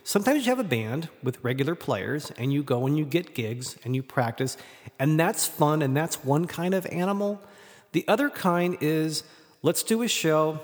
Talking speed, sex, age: 195 wpm, male, 40-59